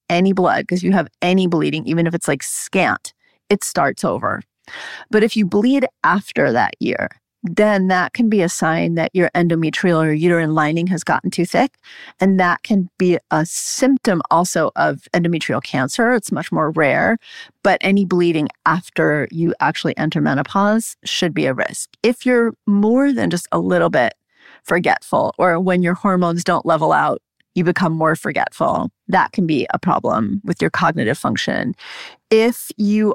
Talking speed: 170 wpm